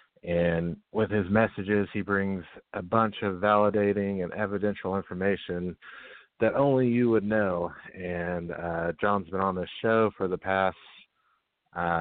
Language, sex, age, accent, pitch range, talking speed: English, male, 30-49, American, 90-110 Hz, 145 wpm